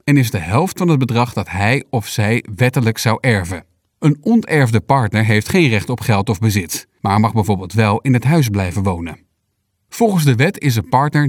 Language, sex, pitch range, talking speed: Dutch, male, 105-145 Hz, 205 wpm